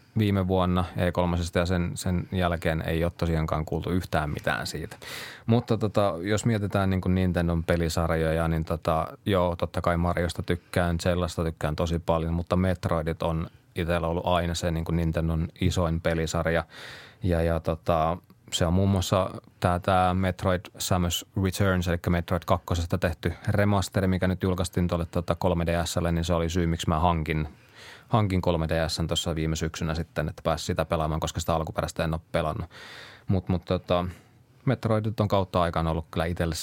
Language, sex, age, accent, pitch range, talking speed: Finnish, male, 20-39, native, 85-95 Hz, 165 wpm